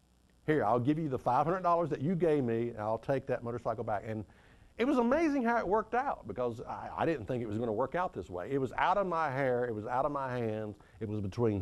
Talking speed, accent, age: 270 wpm, American, 50-69